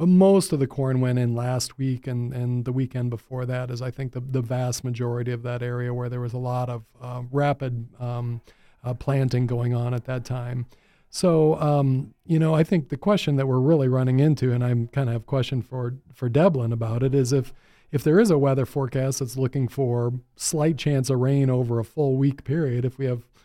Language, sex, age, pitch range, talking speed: English, male, 40-59, 125-145 Hz, 230 wpm